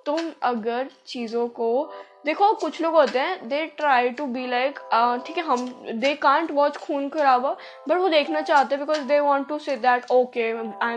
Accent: native